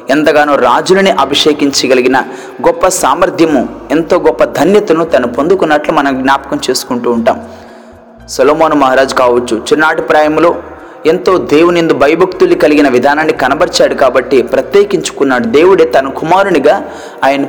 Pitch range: 130-160 Hz